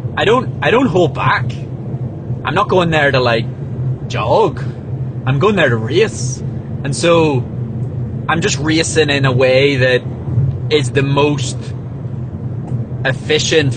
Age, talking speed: 20-39, 135 wpm